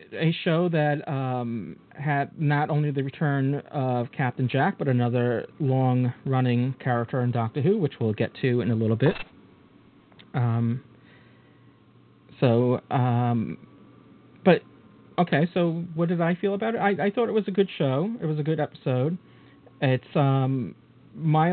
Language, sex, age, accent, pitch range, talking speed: English, male, 40-59, American, 125-155 Hz, 155 wpm